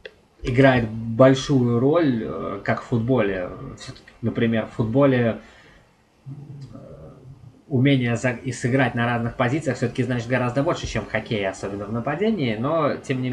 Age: 20-39